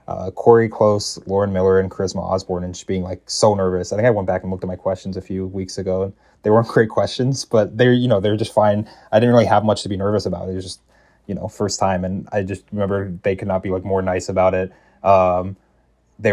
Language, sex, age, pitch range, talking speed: English, male, 20-39, 95-100 Hz, 260 wpm